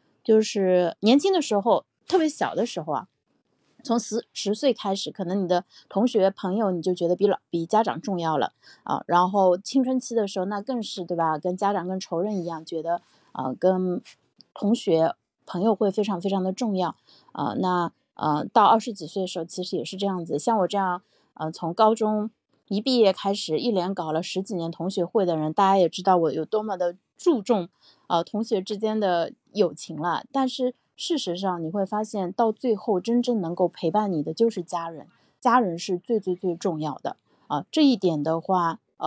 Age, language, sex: 20-39, Chinese, female